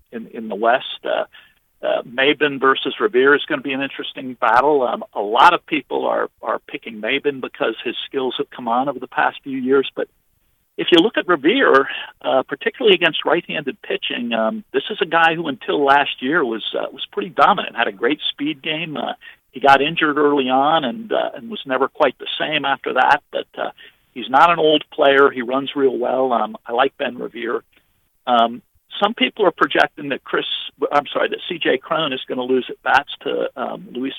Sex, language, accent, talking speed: male, English, American, 210 wpm